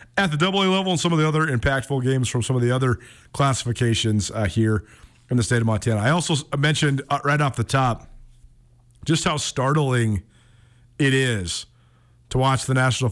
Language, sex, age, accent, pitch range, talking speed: English, male, 40-59, American, 120-150 Hz, 190 wpm